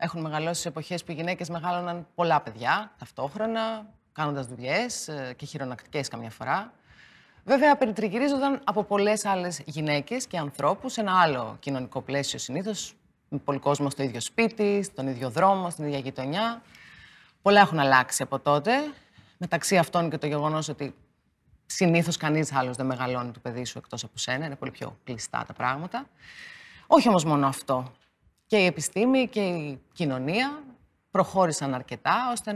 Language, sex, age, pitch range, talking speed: Greek, female, 30-49, 140-215 Hz, 150 wpm